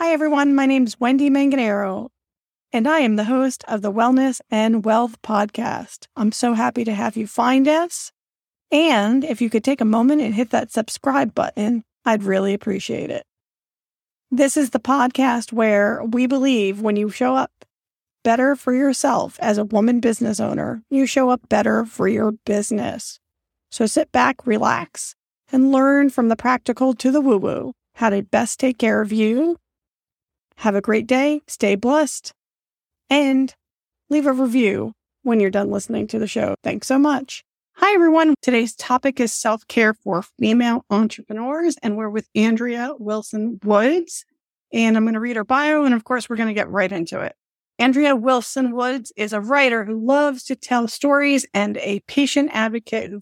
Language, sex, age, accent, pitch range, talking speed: English, female, 40-59, American, 215-265 Hz, 175 wpm